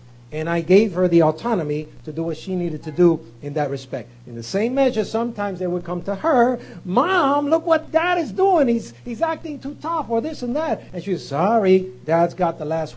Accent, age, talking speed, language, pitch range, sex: American, 50-69, 220 wpm, English, 150-210 Hz, male